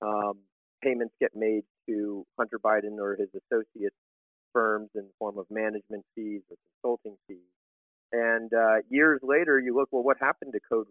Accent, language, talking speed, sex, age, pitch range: American, English, 170 wpm, male, 40-59, 105-130 Hz